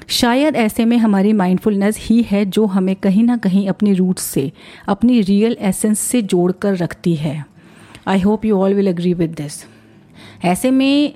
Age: 40-59